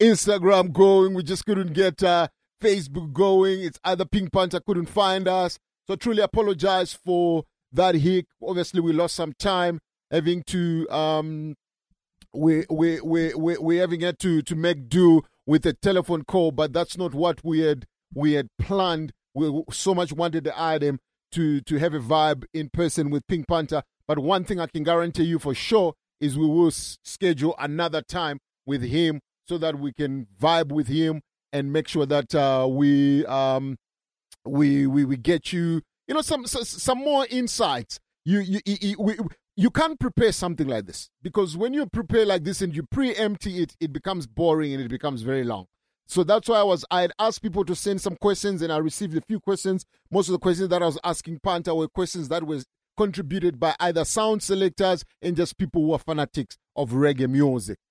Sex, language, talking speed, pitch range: male, English, 195 wpm, 155-190 Hz